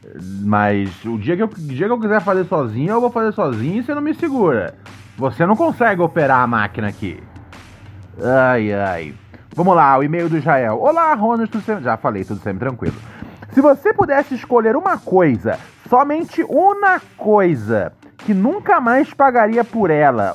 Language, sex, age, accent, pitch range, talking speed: Portuguese, male, 20-39, Brazilian, 150-235 Hz, 175 wpm